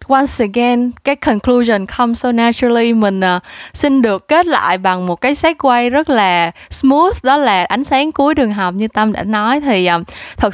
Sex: female